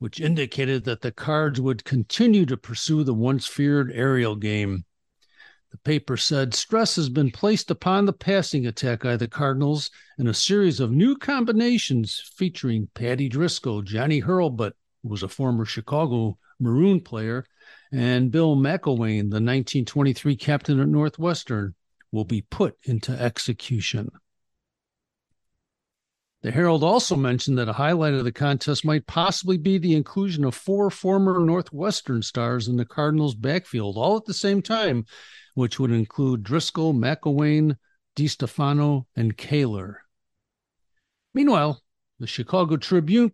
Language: English